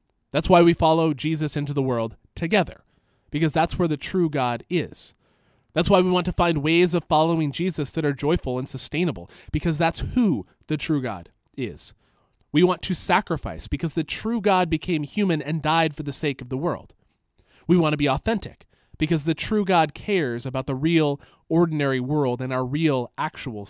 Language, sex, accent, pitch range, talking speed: English, male, American, 130-170 Hz, 190 wpm